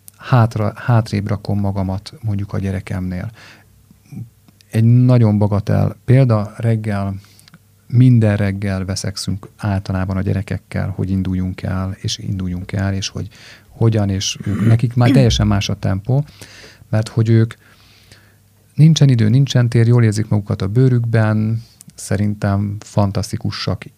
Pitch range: 100-115 Hz